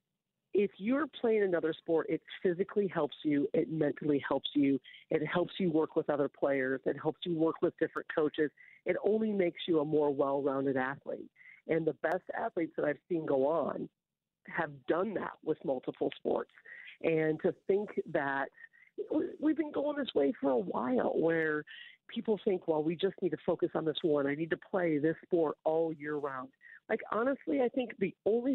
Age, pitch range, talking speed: 50-69, 155-225 Hz, 185 wpm